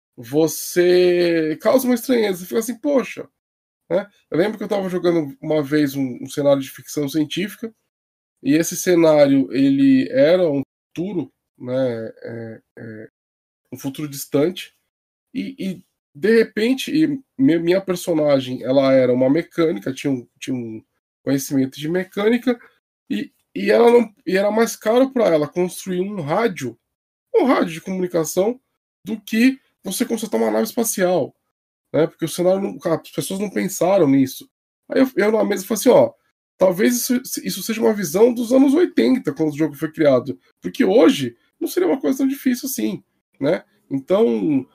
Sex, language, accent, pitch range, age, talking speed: male, Portuguese, Brazilian, 150-235 Hz, 20-39, 160 wpm